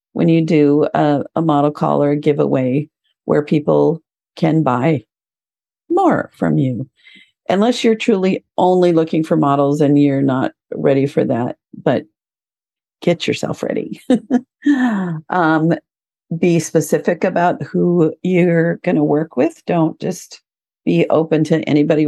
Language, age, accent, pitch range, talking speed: English, 50-69, American, 145-185 Hz, 135 wpm